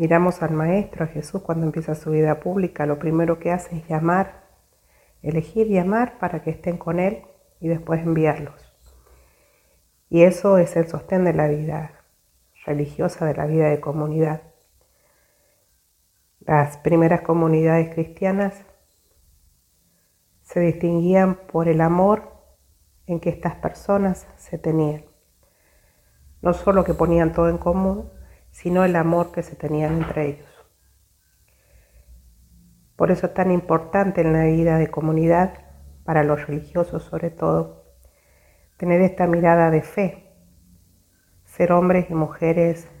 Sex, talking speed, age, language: female, 135 wpm, 50-69, Spanish